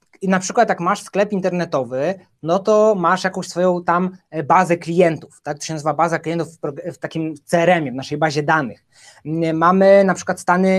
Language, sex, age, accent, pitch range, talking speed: Polish, male, 20-39, native, 155-185 Hz, 180 wpm